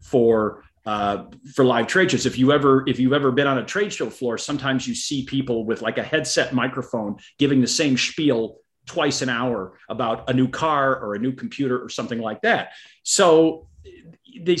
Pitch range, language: 120-160 Hz, English